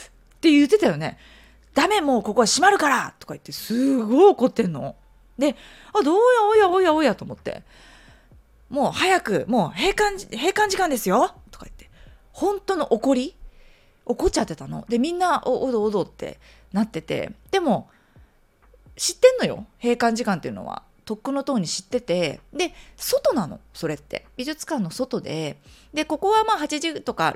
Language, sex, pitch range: Japanese, female, 180-290 Hz